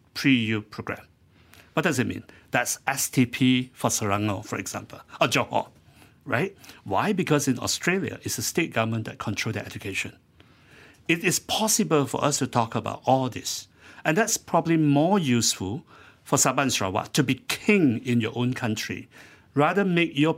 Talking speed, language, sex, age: 160 wpm, English, male, 60-79